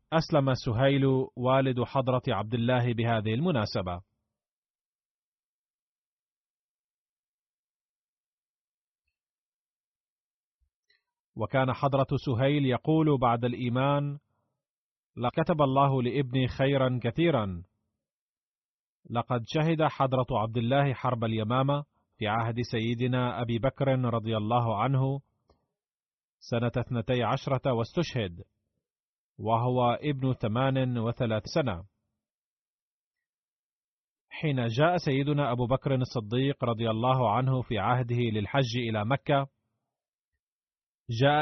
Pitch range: 115-140 Hz